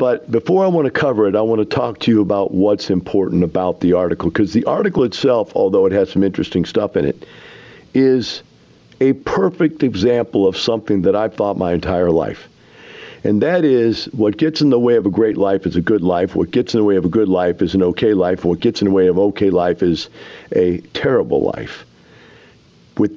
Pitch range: 95-150 Hz